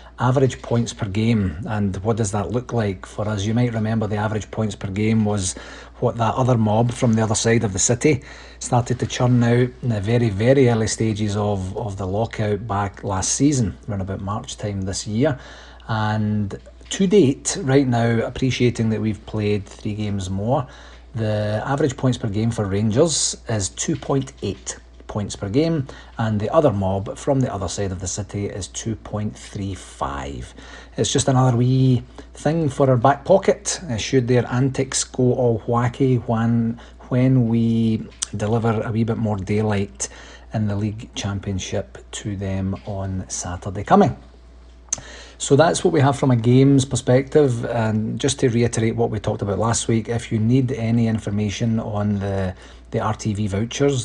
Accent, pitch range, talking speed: British, 100-125 Hz, 170 wpm